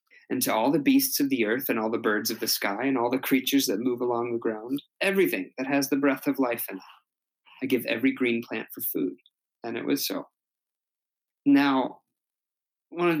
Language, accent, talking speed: English, American, 215 wpm